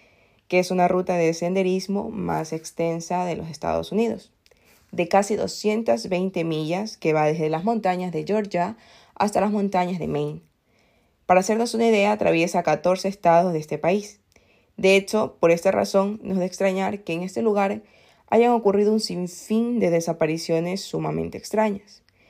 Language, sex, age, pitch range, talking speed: Spanish, female, 20-39, 160-210 Hz, 160 wpm